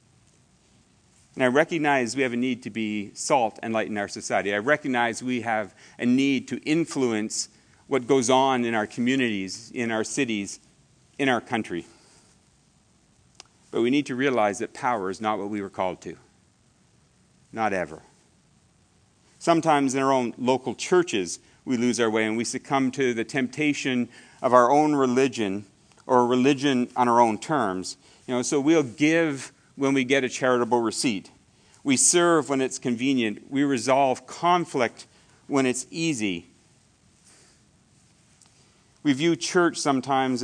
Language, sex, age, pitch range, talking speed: English, male, 40-59, 115-140 Hz, 155 wpm